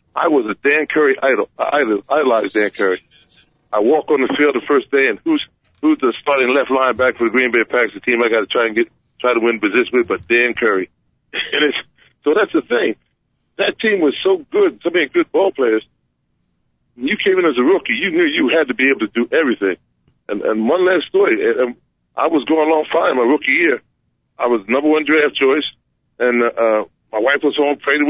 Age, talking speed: 40-59, 220 wpm